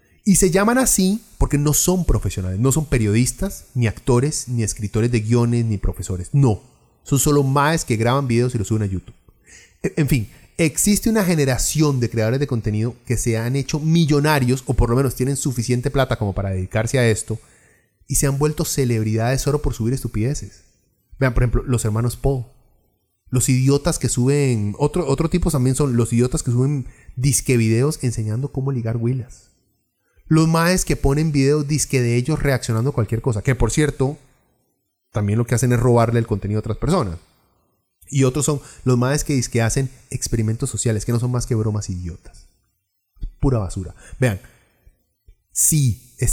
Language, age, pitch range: Spanish, 30-49, 110-145 Hz